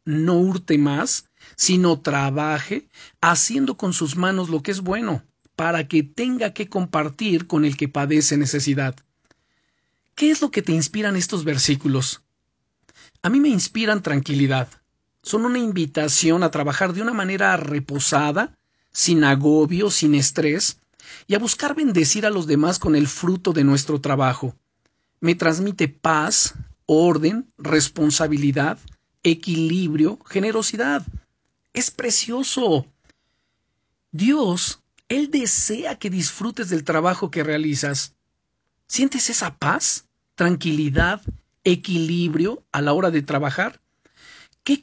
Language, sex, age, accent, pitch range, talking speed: Spanish, male, 50-69, Mexican, 150-200 Hz, 120 wpm